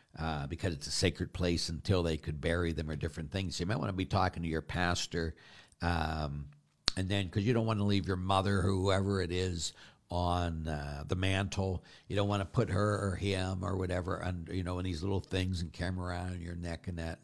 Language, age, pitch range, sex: English, 60-79, 75-95 Hz, male